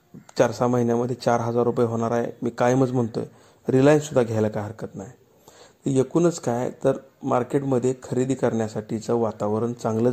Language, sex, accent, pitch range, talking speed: Marathi, male, native, 115-130 Hz, 160 wpm